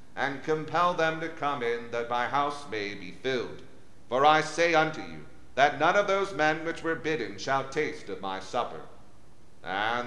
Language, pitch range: English, 125-155 Hz